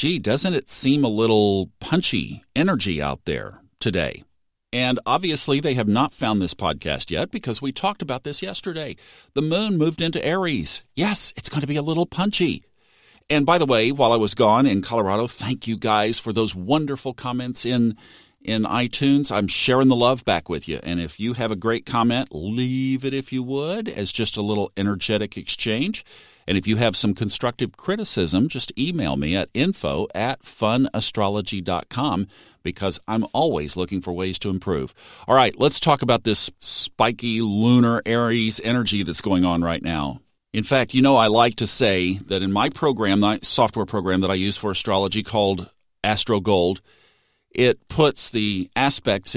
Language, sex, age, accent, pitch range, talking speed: English, male, 50-69, American, 100-125 Hz, 180 wpm